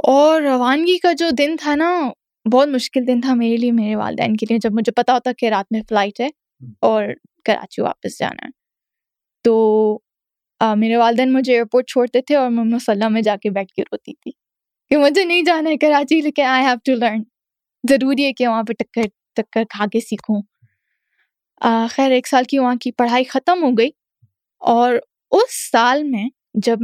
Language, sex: Urdu, female